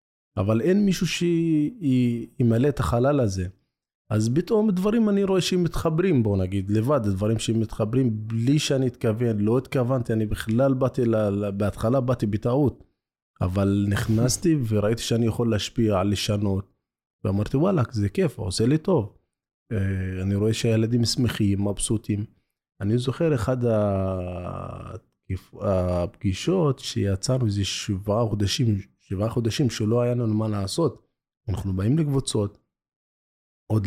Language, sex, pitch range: Hebrew, male, 100-130 Hz